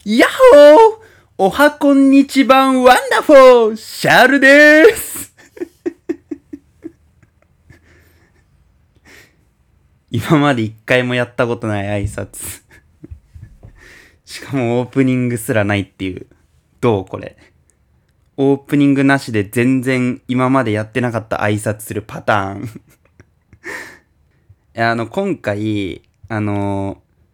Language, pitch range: Japanese, 100-145 Hz